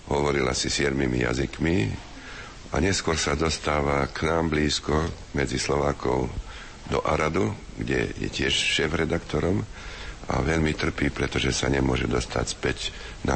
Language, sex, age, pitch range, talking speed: Slovak, male, 60-79, 65-80 Hz, 125 wpm